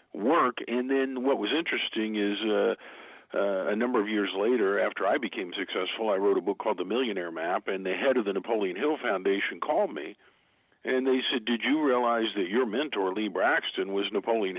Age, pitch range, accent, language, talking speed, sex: 50-69, 100-130 Hz, American, English, 200 wpm, male